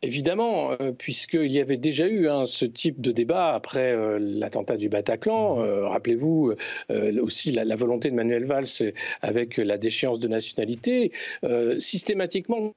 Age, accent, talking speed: 50-69, French, 155 wpm